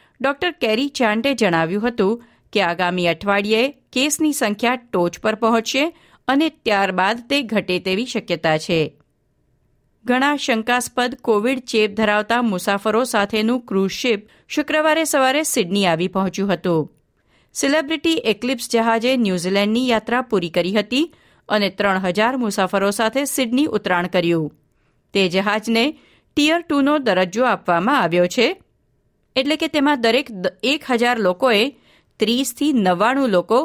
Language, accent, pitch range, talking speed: Gujarati, native, 190-260 Hz, 95 wpm